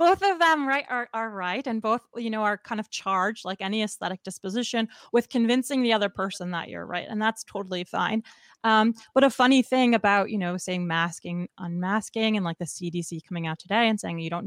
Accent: American